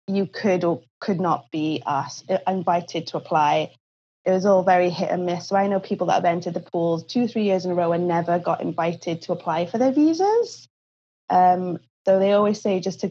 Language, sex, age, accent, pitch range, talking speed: English, female, 20-39, British, 175-205 Hz, 215 wpm